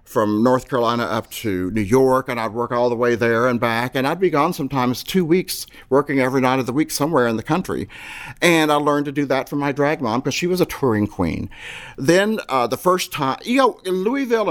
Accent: American